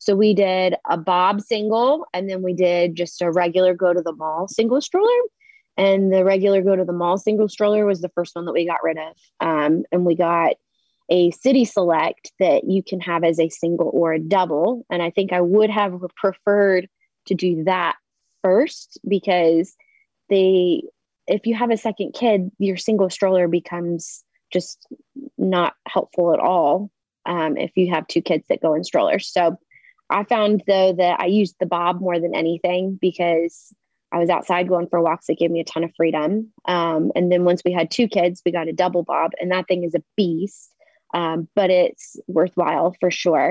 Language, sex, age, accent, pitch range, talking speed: English, female, 20-39, American, 175-215 Hz, 195 wpm